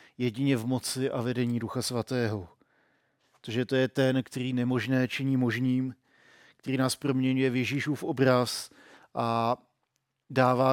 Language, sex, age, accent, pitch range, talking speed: Czech, male, 50-69, native, 120-135 Hz, 130 wpm